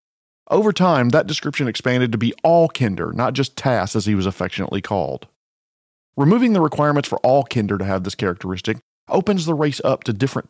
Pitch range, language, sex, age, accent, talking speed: 100-135 Hz, English, male, 40-59, American, 190 wpm